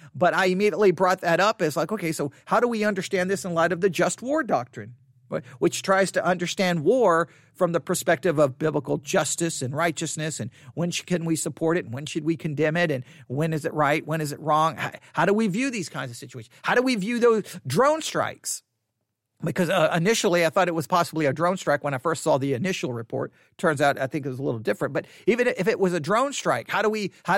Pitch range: 145-220 Hz